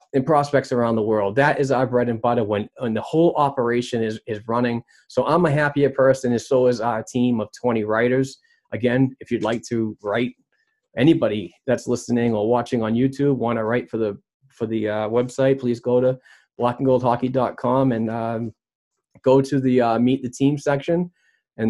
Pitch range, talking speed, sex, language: 115-135 Hz, 190 wpm, male, English